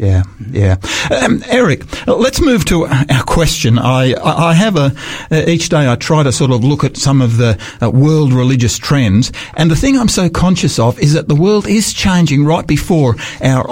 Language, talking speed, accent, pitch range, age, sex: English, 190 wpm, Australian, 125-175 Hz, 50-69, male